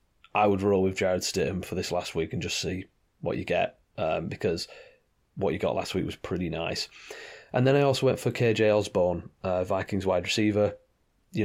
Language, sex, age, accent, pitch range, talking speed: English, male, 30-49, British, 95-110 Hz, 205 wpm